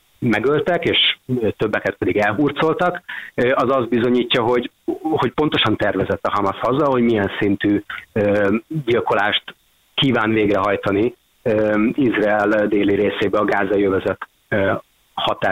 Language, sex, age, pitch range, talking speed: Hungarian, male, 30-49, 105-140 Hz, 105 wpm